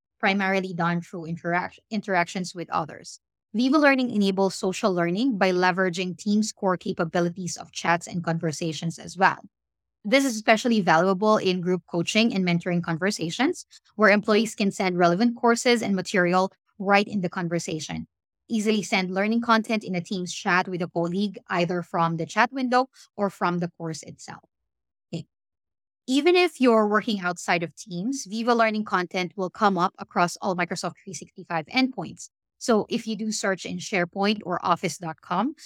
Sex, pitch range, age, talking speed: female, 175-220 Hz, 20-39, 155 wpm